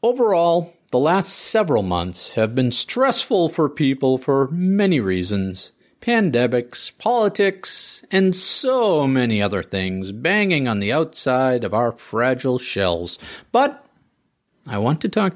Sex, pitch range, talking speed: male, 125-190 Hz, 130 wpm